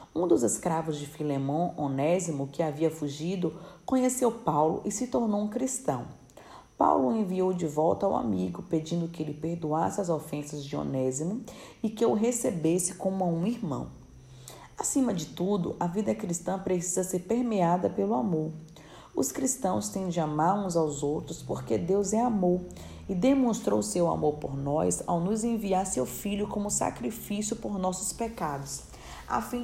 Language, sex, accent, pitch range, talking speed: Portuguese, female, Brazilian, 160-205 Hz, 160 wpm